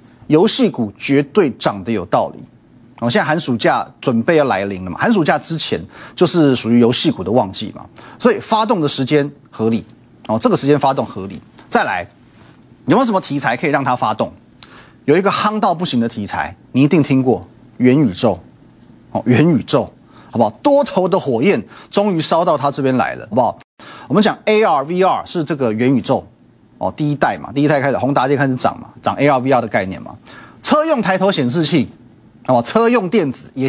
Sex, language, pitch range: male, Chinese, 125-190 Hz